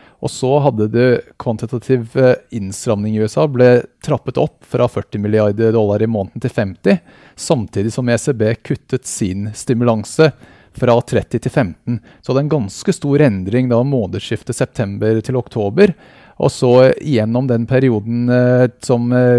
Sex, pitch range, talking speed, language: male, 110-130 Hz, 140 wpm, English